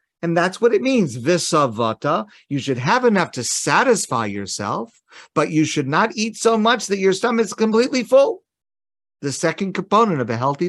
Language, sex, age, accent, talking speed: English, male, 50-69, American, 175 wpm